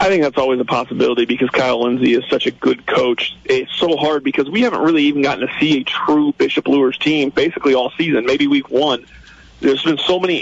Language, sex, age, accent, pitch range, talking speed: English, male, 40-59, American, 130-160 Hz, 230 wpm